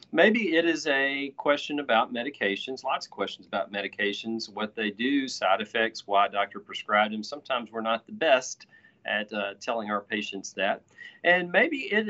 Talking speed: 180 wpm